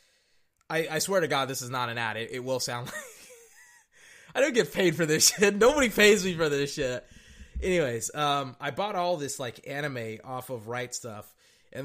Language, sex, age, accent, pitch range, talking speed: English, male, 20-39, American, 120-155 Hz, 210 wpm